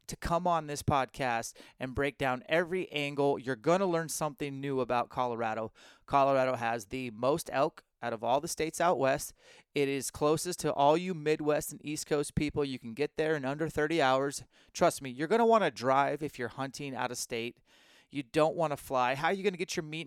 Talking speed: 225 wpm